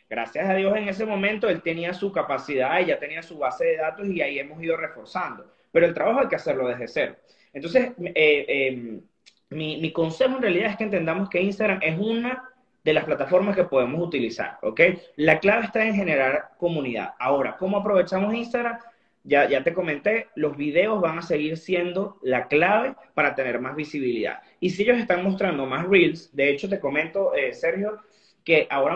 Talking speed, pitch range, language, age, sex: 190 wpm, 155-210 Hz, Spanish, 30-49, male